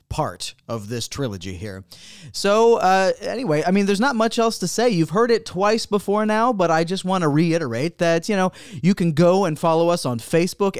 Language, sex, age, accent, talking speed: English, male, 30-49, American, 215 wpm